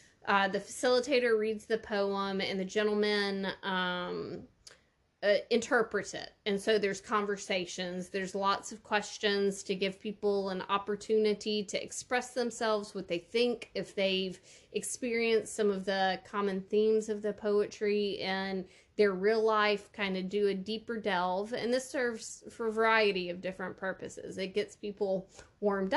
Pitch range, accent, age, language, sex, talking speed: 195-220 Hz, American, 20-39, English, female, 150 wpm